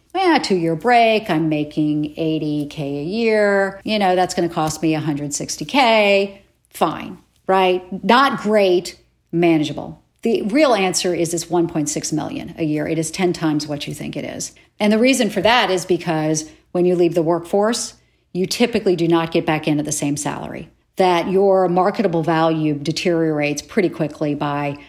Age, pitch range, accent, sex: 50-69, 160-210 Hz, American, female